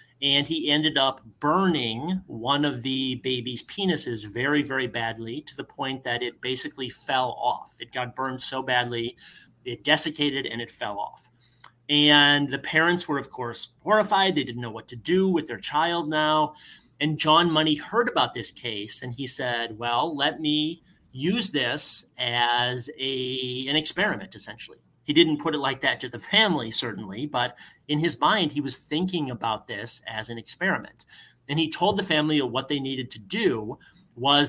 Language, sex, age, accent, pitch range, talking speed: English, male, 30-49, American, 125-155 Hz, 175 wpm